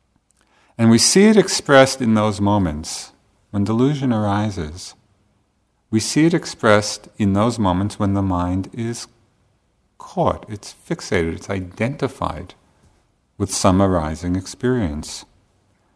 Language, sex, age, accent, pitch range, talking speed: English, male, 50-69, American, 90-110 Hz, 115 wpm